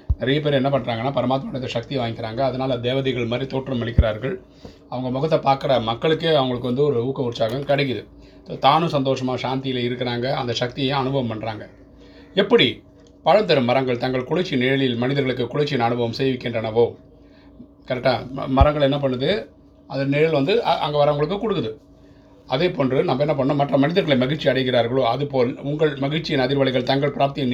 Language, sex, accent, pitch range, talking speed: Tamil, male, native, 120-140 Hz, 140 wpm